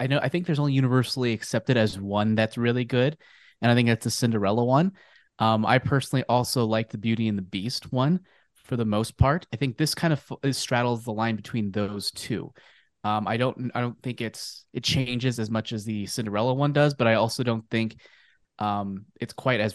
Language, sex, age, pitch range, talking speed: English, male, 20-39, 115-135 Hz, 220 wpm